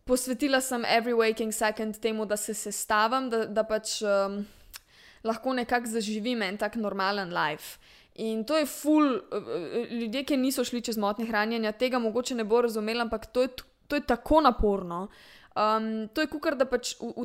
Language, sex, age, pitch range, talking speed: English, female, 20-39, 200-240 Hz, 175 wpm